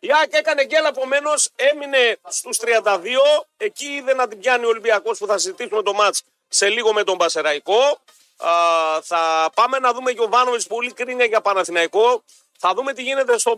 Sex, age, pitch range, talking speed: male, 40-59, 175-235 Hz, 180 wpm